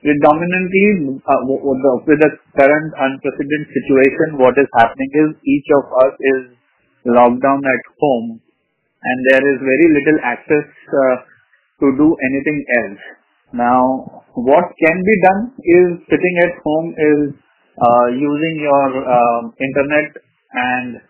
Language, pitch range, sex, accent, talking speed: English, 130-155 Hz, male, Indian, 130 wpm